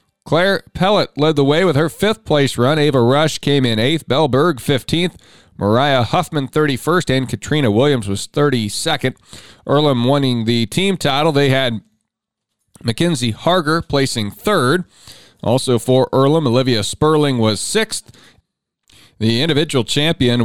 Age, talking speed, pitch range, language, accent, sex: 40-59, 130 wpm, 120-150 Hz, English, American, male